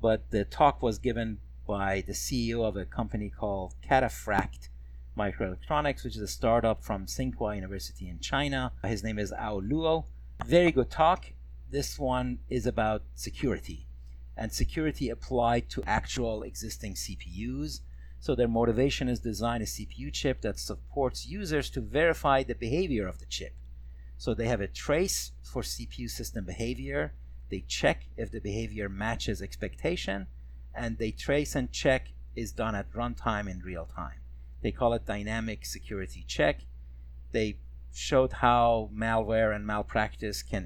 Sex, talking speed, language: male, 150 wpm, English